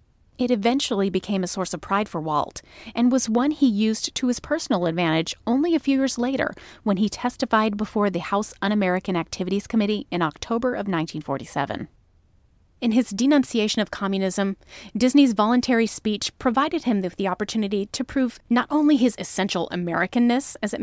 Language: English